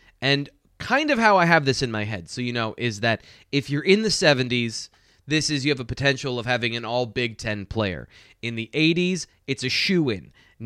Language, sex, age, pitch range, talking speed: English, male, 20-39, 115-150 Hz, 220 wpm